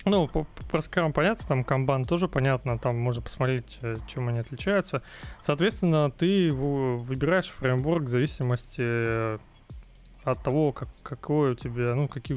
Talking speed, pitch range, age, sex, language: 135 wpm, 115-140 Hz, 20-39, male, Russian